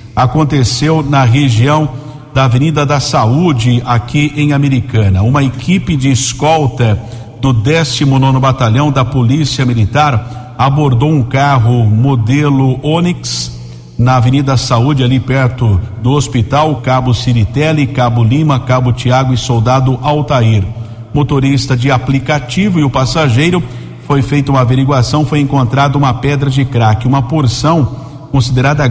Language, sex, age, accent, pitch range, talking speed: Portuguese, male, 50-69, Brazilian, 125-145 Hz, 125 wpm